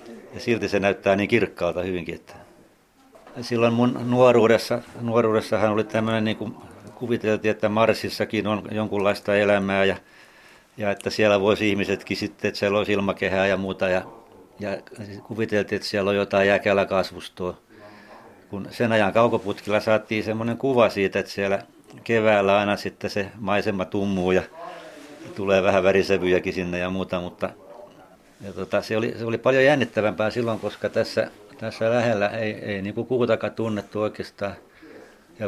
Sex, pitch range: male, 95-110 Hz